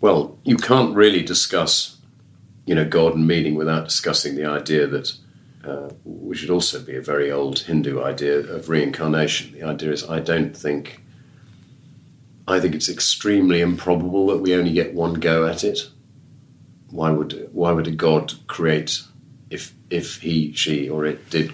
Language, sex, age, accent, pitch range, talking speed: English, male, 40-59, British, 75-95 Hz, 165 wpm